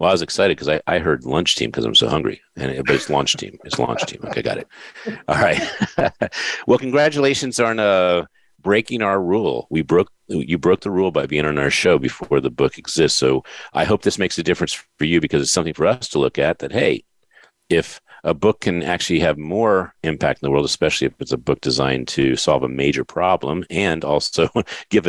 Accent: American